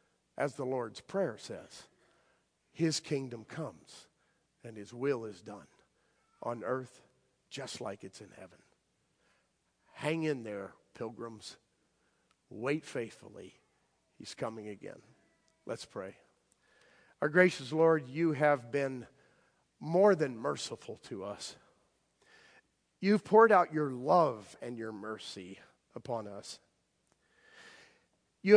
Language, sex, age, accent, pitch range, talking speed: English, male, 50-69, American, 130-210 Hz, 110 wpm